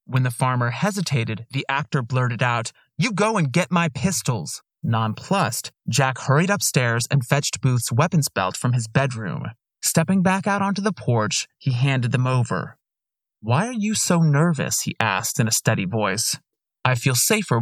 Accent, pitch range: American, 120-160 Hz